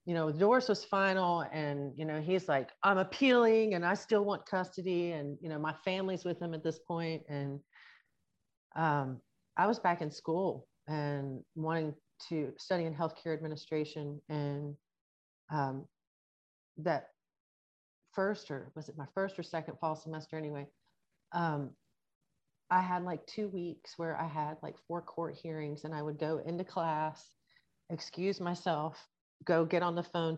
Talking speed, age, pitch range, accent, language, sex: 160 wpm, 40-59, 150-185 Hz, American, English, female